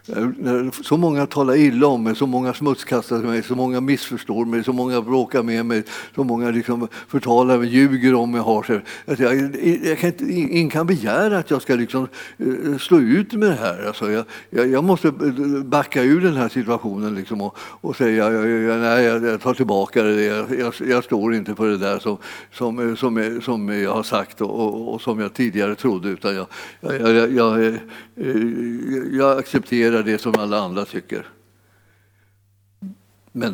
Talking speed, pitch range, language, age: 165 wpm, 115-140 Hz, Swedish, 60-79